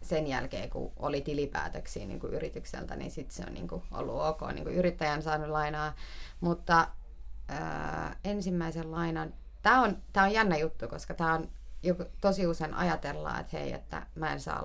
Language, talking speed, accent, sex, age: Finnish, 165 wpm, native, female, 30-49